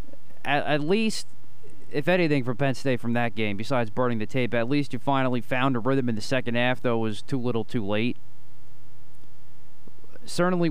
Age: 20-39